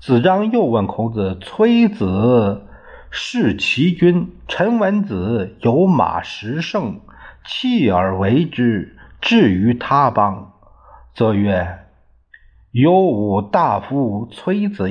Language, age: Chinese, 50-69